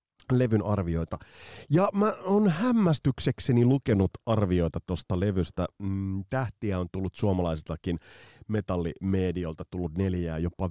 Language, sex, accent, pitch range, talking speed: Finnish, male, native, 85-135 Hz, 105 wpm